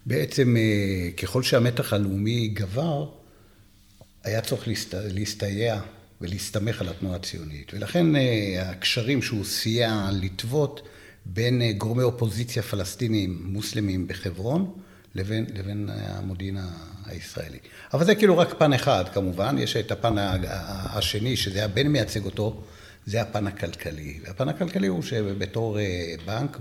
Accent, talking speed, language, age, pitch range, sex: native, 115 wpm, Hebrew, 60-79, 95-115 Hz, male